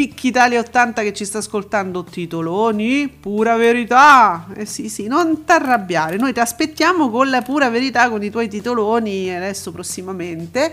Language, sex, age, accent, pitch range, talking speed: Italian, female, 40-59, native, 195-245 Hz, 155 wpm